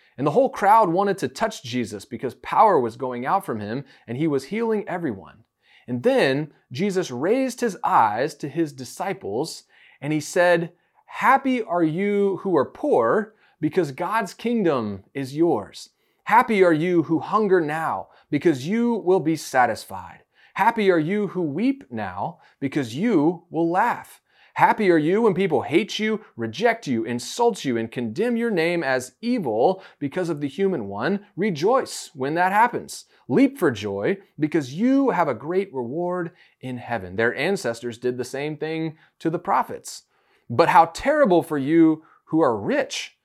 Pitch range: 140-210 Hz